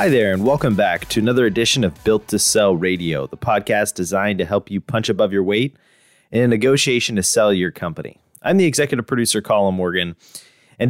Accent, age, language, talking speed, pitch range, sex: American, 30-49, English, 205 wpm, 90-125 Hz, male